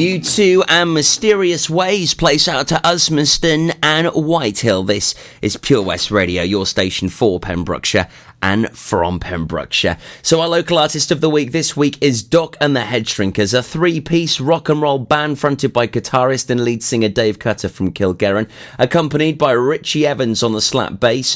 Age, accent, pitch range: 30-49, British, 110-150 Hz